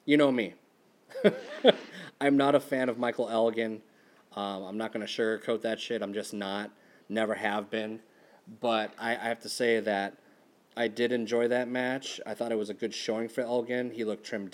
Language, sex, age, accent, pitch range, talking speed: English, male, 30-49, American, 105-125 Hz, 195 wpm